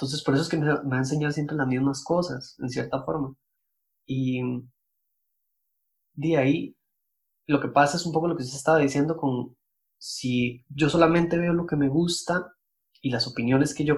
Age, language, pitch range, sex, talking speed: 20-39, Spanish, 130-155 Hz, male, 185 wpm